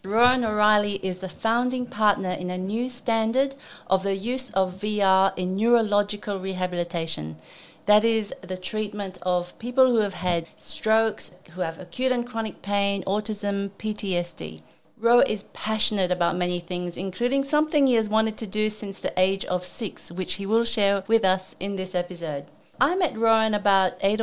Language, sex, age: English, female, 40-59